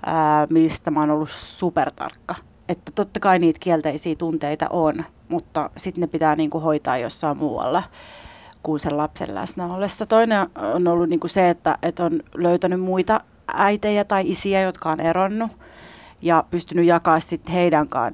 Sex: female